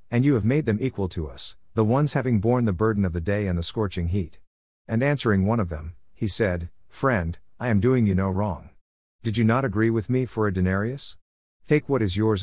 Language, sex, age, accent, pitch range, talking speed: English, male, 50-69, American, 90-120 Hz, 230 wpm